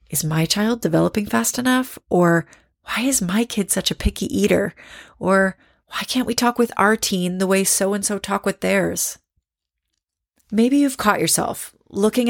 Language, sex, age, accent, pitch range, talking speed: English, female, 30-49, American, 170-210 Hz, 165 wpm